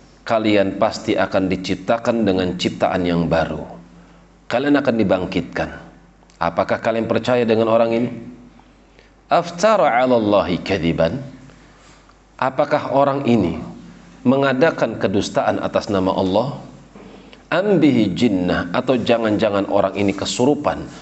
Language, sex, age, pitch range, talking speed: Indonesian, male, 40-59, 90-105 Hz, 100 wpm